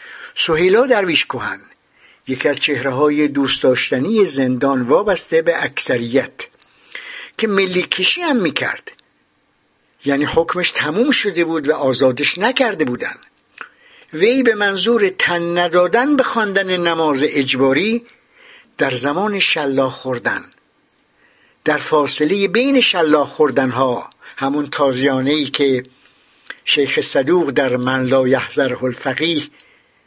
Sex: male